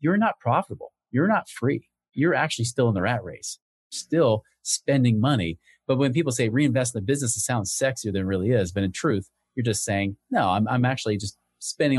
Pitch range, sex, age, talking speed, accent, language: 95-130 Hz, male, 30-49, 215 wpm, American, English